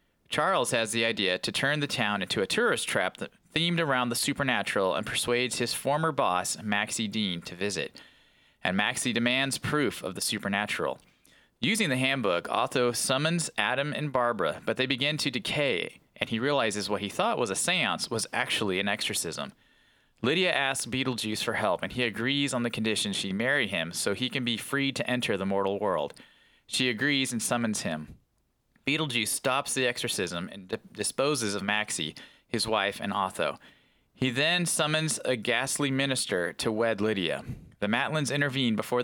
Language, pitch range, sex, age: English, 110-140 Hz, male, 30-49